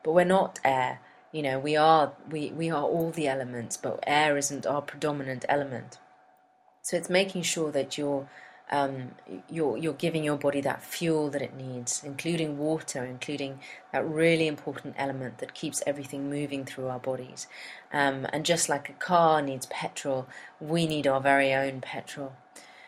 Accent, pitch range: British, 135-150 Hz